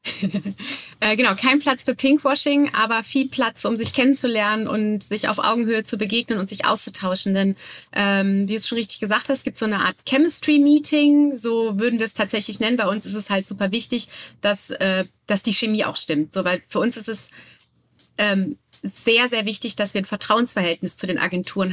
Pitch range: 205-245 Hz